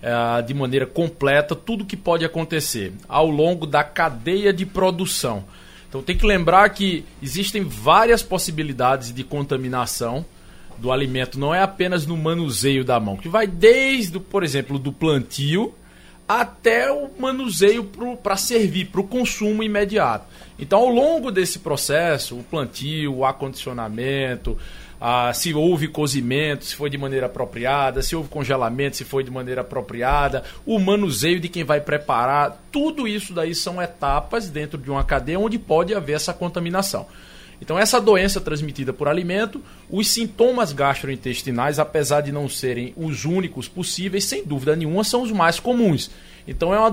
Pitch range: 130-190 Hz